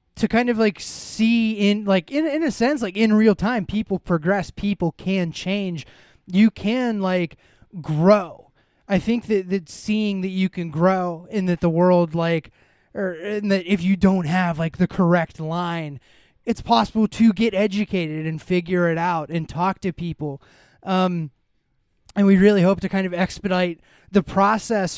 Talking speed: 175 wpm